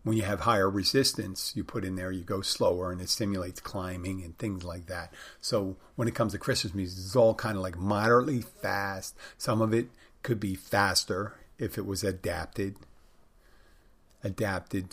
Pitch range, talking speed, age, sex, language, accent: 95-120 Hz, 180 wpm, 50-69, male, English, American